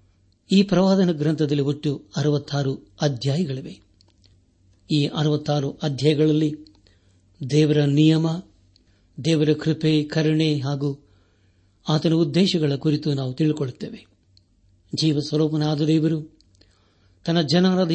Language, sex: Kannada, male